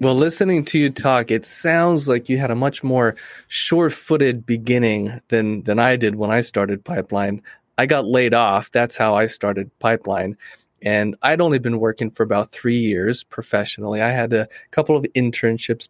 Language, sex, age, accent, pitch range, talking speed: English, male, 30-49, American, 110-125 Hz, 180 wpm